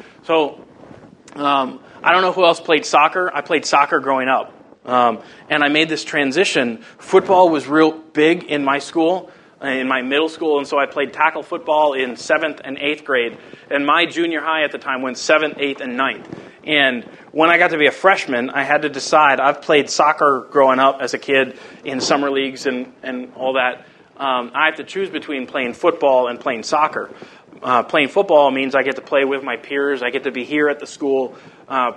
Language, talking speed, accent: English, 210 wpm, American